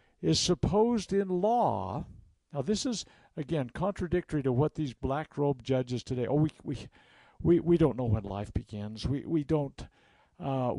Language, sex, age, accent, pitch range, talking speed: English, male, 60-79, American, 130-170 Hz, 165 wpm